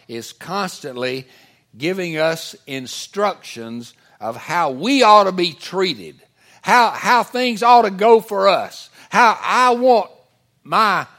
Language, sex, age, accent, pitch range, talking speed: English, male, 60-79, American, 140-195 Hz, 130 wpm